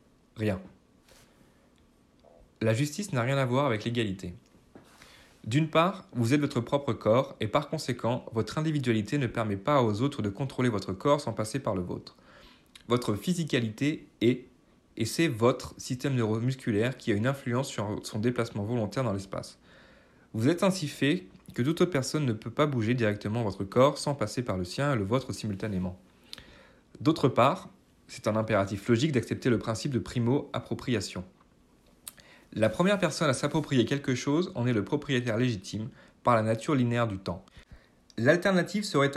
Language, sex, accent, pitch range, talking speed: French, male, French, 110-145 Hz, 165 wpm